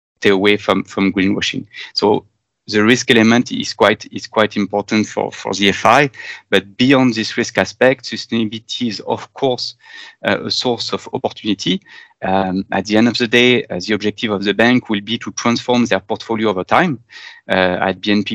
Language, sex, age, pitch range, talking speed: English, male, 30-49, 100-120 Hz, 180 wpm